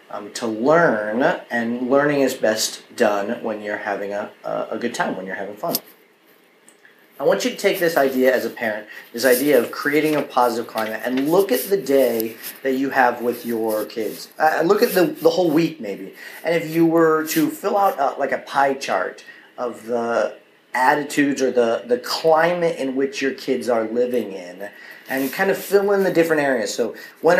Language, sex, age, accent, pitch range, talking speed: English, male, 40-59, American, 120-155 Hz, 200 wpm